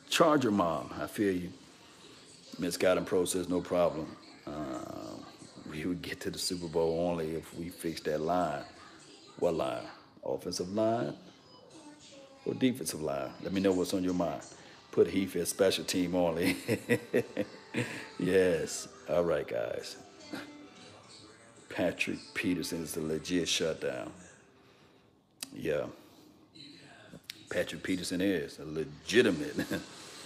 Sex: male